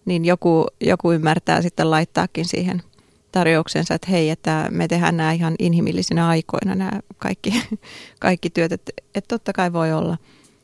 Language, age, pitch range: Finnish, 30-49, 165-185 Hz